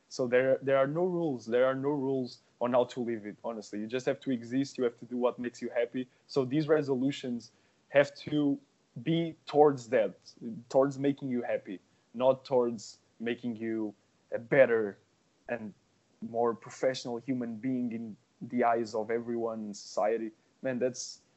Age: 20-39